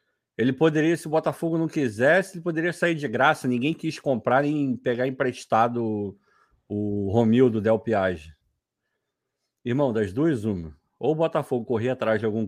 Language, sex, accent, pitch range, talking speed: Portuguese, male, Brazilian, 110-155 Hz, 165 wpm